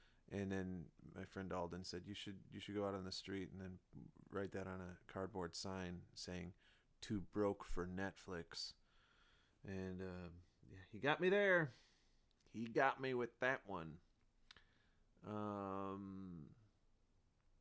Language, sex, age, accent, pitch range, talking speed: English, male, 30-49, American, 95-110 Hz, 145 wpm